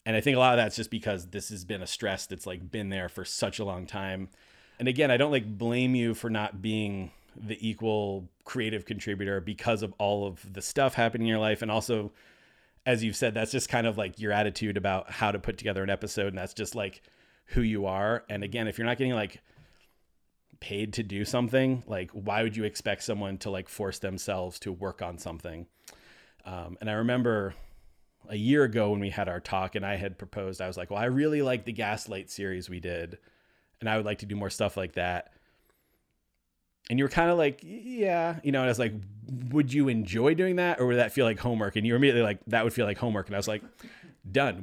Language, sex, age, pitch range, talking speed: English, male, 30-49, 95-120 Hz, 235 wpm